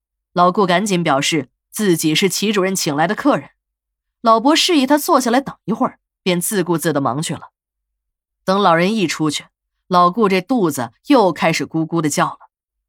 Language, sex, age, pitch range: Chinese, female, 20-39, 155-260 Hz